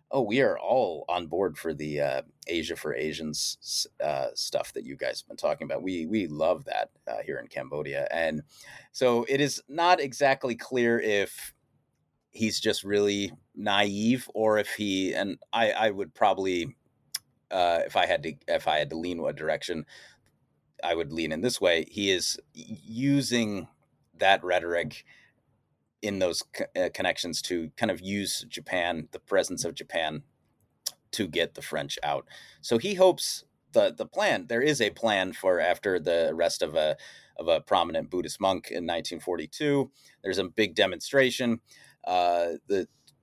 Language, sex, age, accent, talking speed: English, male, 30-49, American, 165 wpm